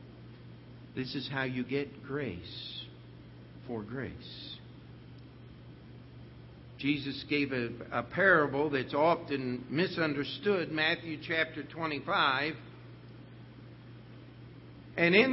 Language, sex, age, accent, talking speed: English, male, 60-79, American, 80 wpm